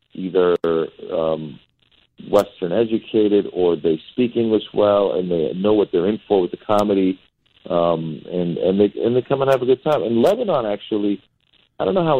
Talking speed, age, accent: 180 wpm, 50-69, American